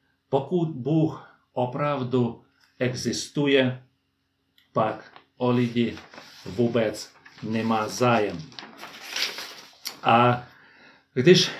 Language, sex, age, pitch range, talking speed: Czech, male, 40-59, 120-140 Hz, 60 wpm